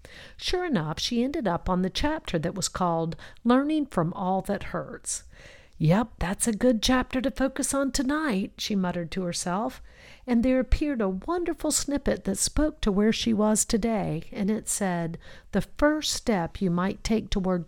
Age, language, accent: 50-69, English, American